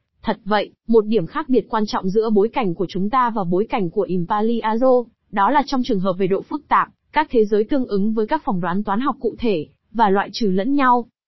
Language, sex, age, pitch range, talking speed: Vietnamese, female, 20-39, 200-250 Hz, 250 wpm